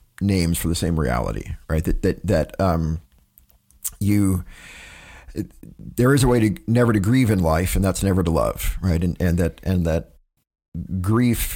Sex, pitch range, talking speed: male, 80-100 Hz, 175 wpm